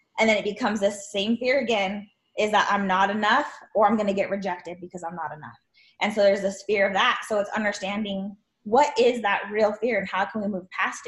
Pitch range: 195-220 Hz